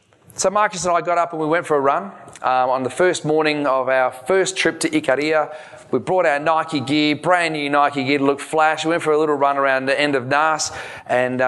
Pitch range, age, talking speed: 135-160 Hz, 30-49, 240 wpm